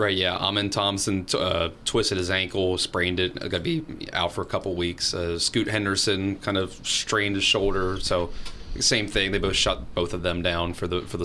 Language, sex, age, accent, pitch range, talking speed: English, male, 20-39, American, 95-115 Hz, 205 wpm